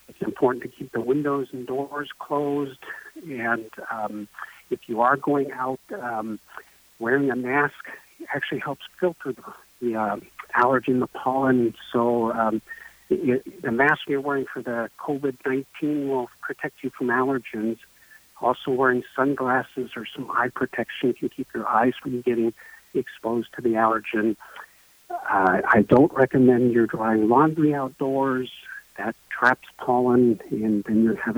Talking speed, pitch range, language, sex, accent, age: 145 wpm, 115-135 Hz, English, male, American, 50-69